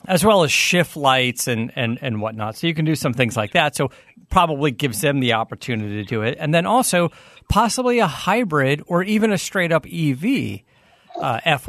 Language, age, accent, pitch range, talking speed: English, 40-59, American, 120-160 Hz, 200 wpm